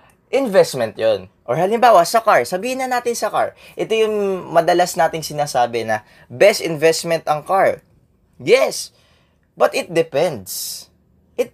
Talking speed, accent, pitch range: 135 wpm, Filipino, 140-185 Hz